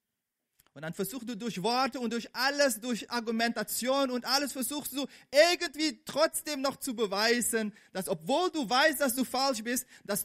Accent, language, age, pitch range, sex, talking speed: German, English, 40-59, 180-240 Hz, male, 170 wpm